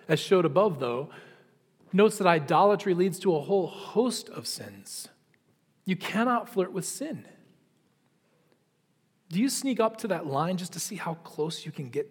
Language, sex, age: English, male, 40-59